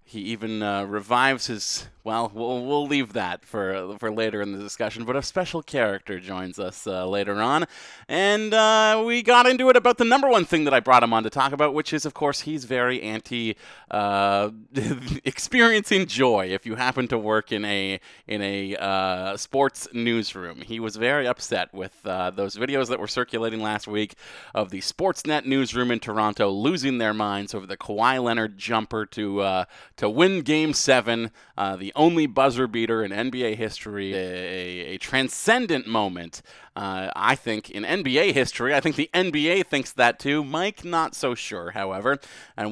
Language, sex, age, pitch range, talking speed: English, male, 30-49, 105-150 Hz, 180 wpm